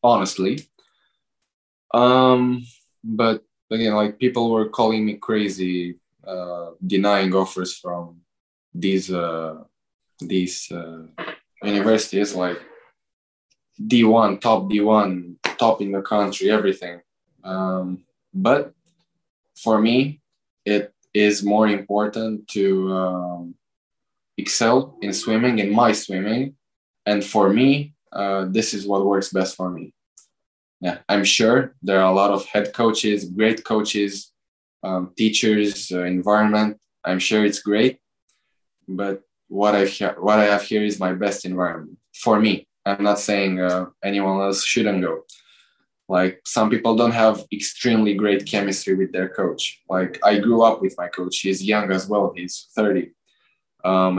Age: 10-29